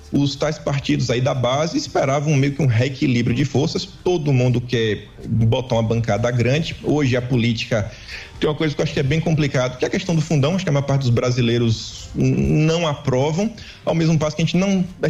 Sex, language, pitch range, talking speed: male, Portuguese, 120-155 Hz, 225 wpm